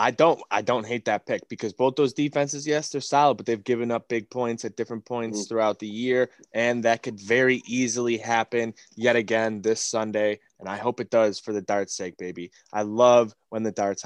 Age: 20-39